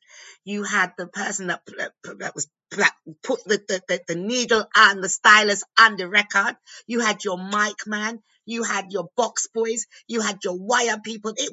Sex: female